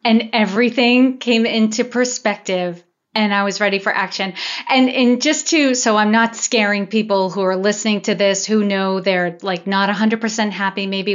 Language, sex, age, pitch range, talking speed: English, female, 30-49, 190-230 Hz, 190 wpm